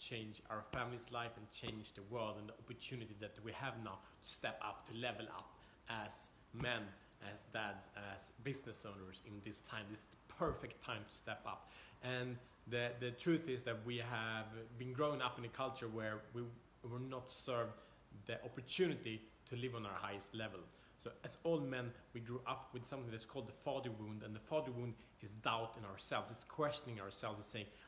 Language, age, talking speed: English, 30-49, 200 wpm